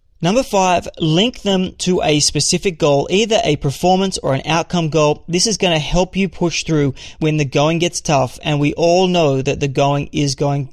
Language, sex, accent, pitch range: English, male, Australian, 140-175 Hz